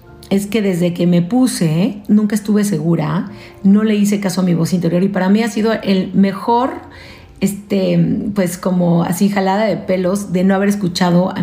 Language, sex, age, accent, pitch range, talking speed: Spanish, female, 40-59, Mexican, 170-220 Hz, 190 wpm